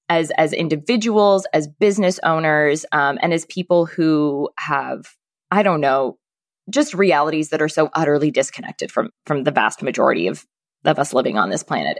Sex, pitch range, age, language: female, 145-195 Hz, 20-39, English